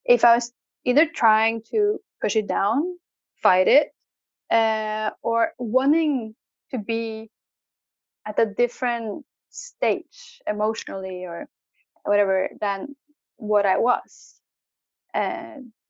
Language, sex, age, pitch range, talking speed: English, female, 10-29, 215-295 Hz, 105 wpm